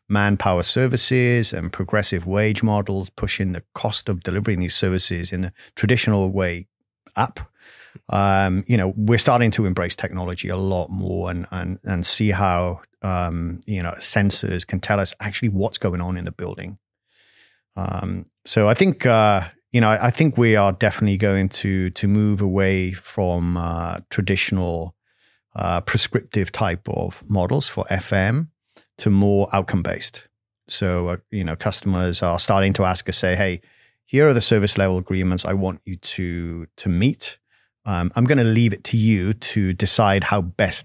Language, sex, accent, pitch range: English, male, British, 90-110 Hz